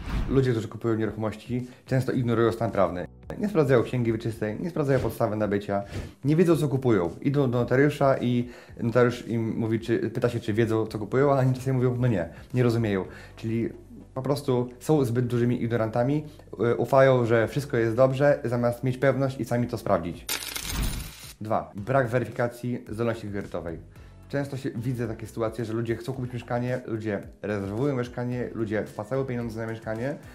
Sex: male